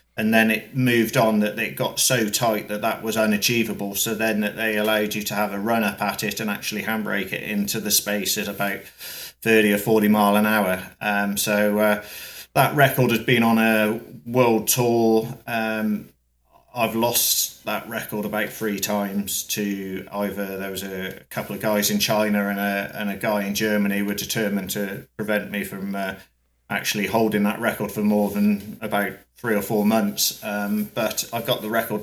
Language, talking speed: English, 190 wpm